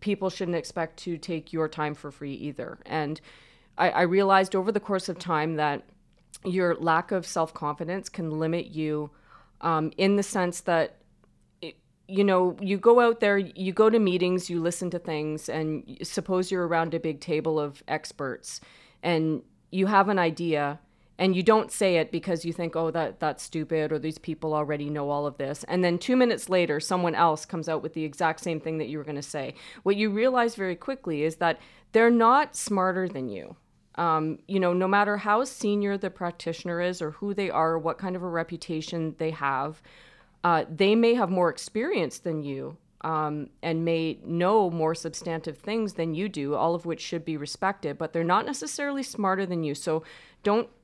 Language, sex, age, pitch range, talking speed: English, female, 30-49, 160-190 Hz, 195 wpm